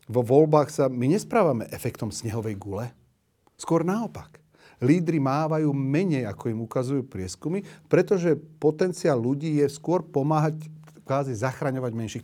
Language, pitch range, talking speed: Slovak, 115-155 Hz, 125 wpm